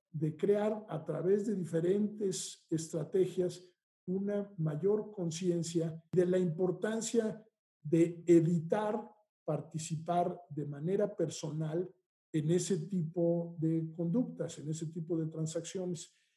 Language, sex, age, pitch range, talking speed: Spanish, male, 50-69, 160-190 Hz, 105 wpm